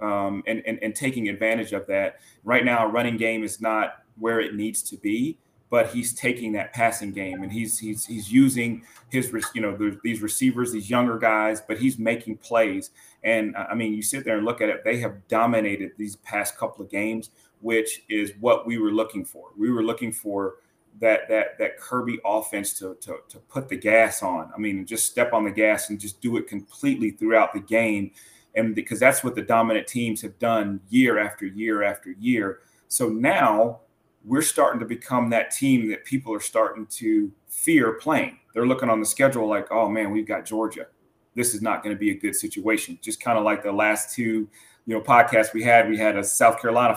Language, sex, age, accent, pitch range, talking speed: English, male, 30-49, American, 105-120 Hz, 210 wpm